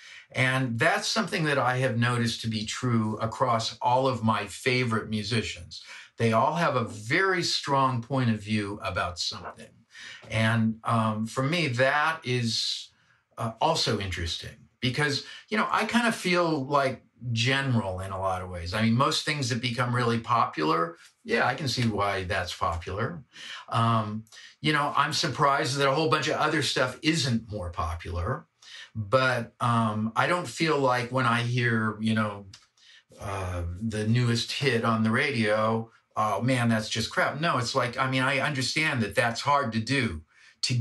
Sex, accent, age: male, American, 50-69